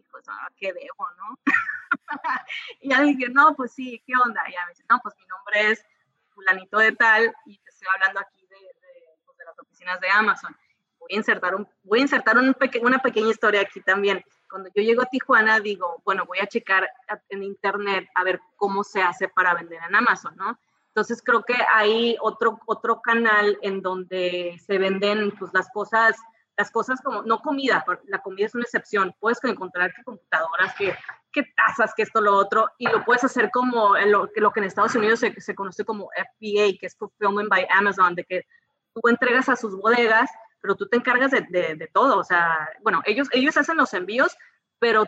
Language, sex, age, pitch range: Spanish, female, 20-39, 190-240 Hz